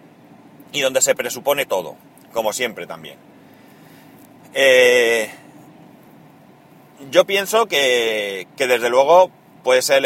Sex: male